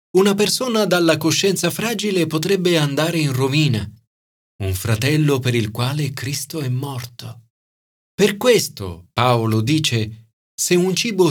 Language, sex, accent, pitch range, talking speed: Italian, male, native, 110-170 Hz, 125 wpm